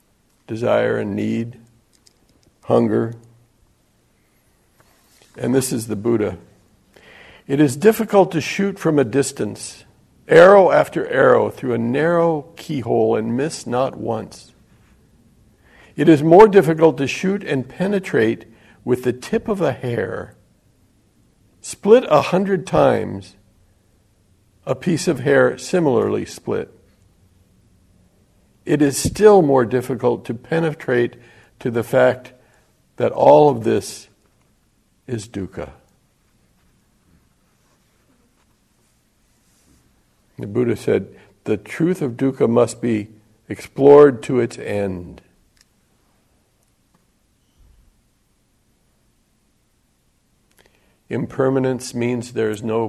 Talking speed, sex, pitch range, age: 100 wpm, male, 105-145 Hz, 60-79